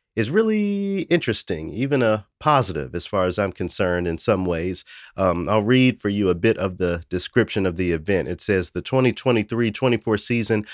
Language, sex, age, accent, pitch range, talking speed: English, male, 40-59, American, 95-115 Hz, 180 wpm